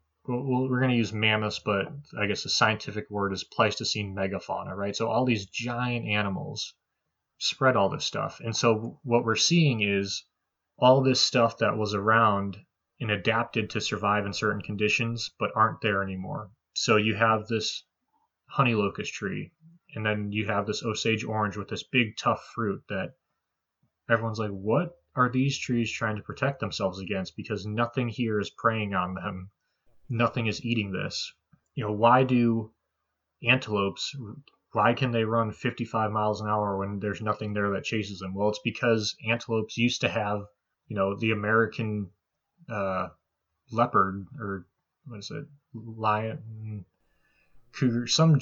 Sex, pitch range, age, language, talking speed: male, 105-120 Hz, 20-39, English, 160 wpm